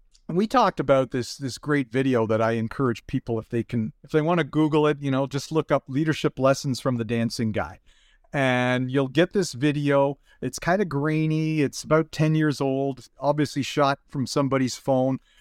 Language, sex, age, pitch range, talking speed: English, male, 40-59, 130-155 Hz, 200 wpm